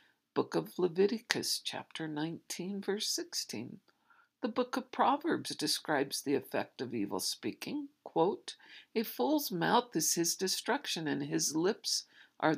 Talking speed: 135 wpm